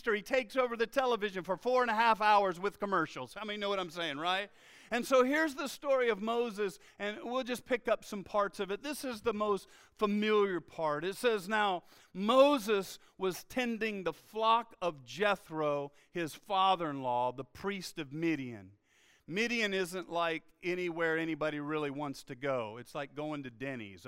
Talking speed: 180 wpm